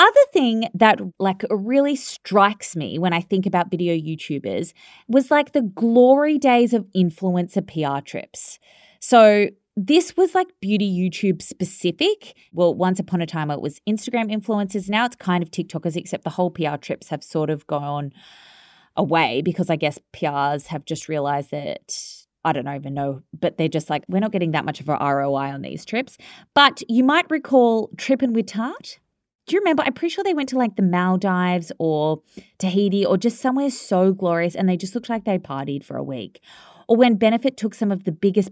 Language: English